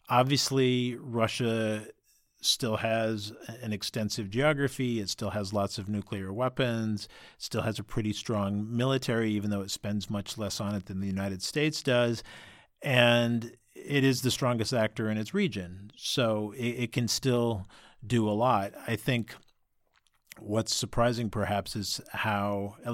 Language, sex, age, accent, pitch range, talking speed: English, male, 50-69, American, 100-120 Hz, 150 wpm